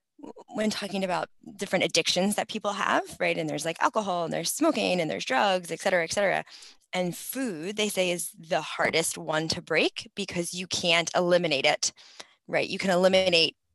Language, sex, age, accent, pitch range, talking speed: English, female, 20-39, American, 155-185 Hz, 185 wpm